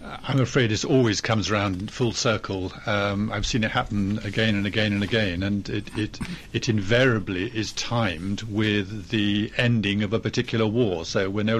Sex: male